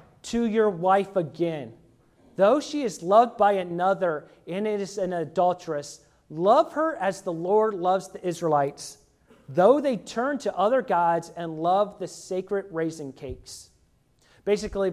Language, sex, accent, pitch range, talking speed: English, male, American, 170-235 Hz, 140 wpm